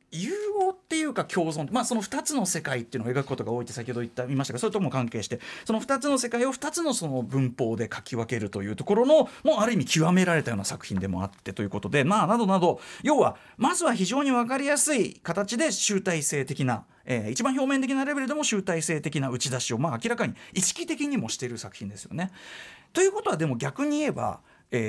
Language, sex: Japanese, male